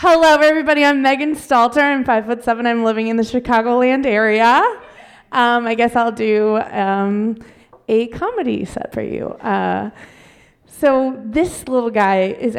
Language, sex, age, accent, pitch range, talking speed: English, female, 20-39, American, 215-280 Hz, 145 wpm